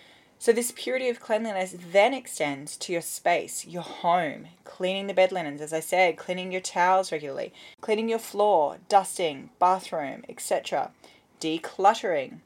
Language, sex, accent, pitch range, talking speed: English, female, Australian, 160-200 Hz, 145 wpm